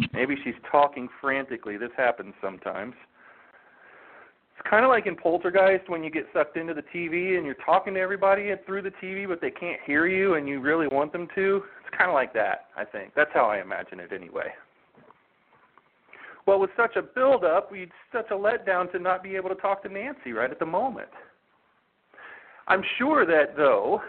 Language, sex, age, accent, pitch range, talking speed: English, male, 40-59, American, 145-190 Hz, 190 wpm